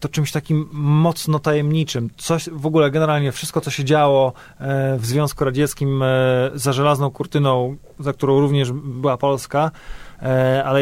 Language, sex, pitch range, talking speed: Polish, male, 140-155 Hz, 140 wpm